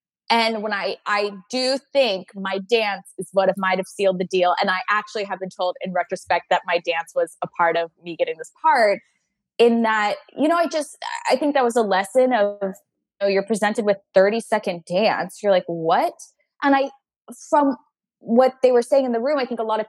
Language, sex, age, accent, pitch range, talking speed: English, female, 20-39, American, 190-265 Hz, 220 wpm